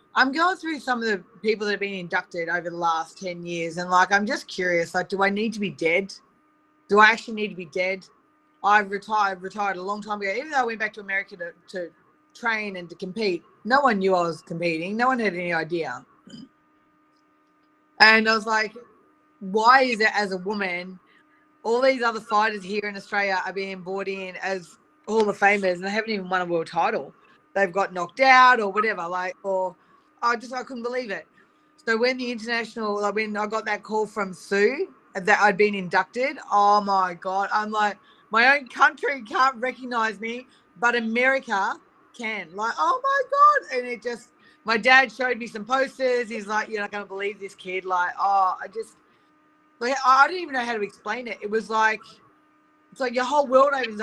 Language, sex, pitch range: English, female, 195-255 Hz